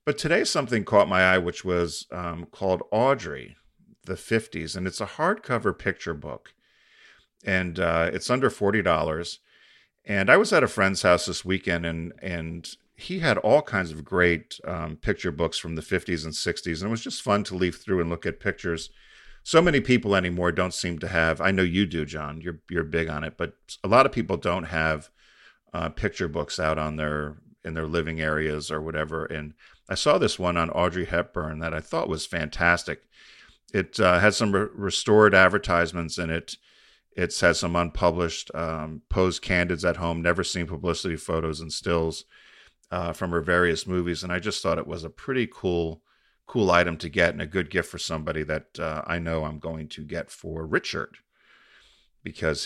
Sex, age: male, 40-59